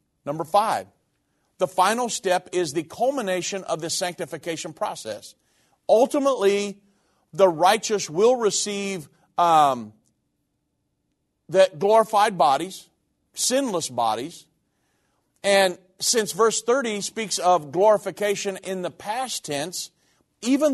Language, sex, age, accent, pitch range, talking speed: English, male, 50-69, American, 170-210 Hz, 100 wpm